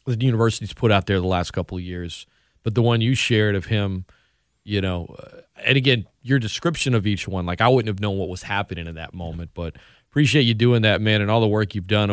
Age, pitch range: 40-59, 95-125 Hz